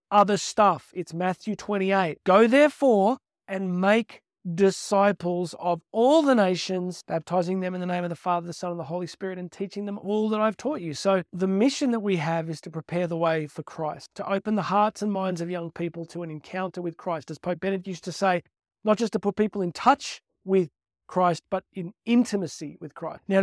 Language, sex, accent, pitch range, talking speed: English, male, Australian, 180-215 Hz, 215 wpm